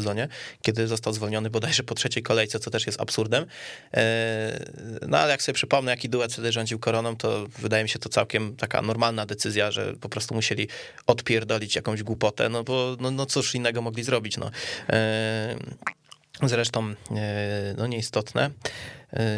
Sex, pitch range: male, 110-145 Hz